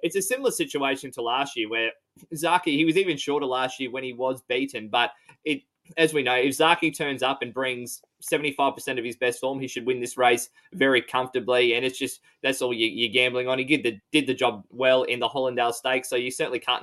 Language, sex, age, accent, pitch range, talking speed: English, male, 20-39, Australian, 120-145 Hz, 235 wpm